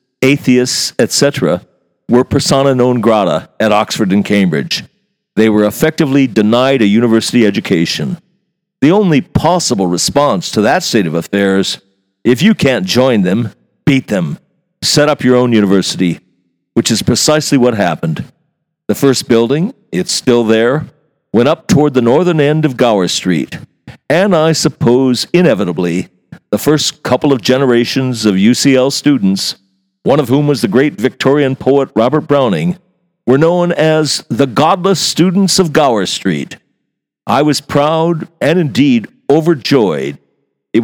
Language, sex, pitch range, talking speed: English, male, 110-160 Hz, 140 wpm